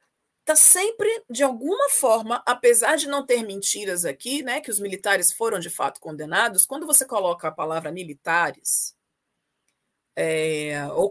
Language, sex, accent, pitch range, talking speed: Portuguese, female, Brazilian, 195-295 Hz, 140 wpm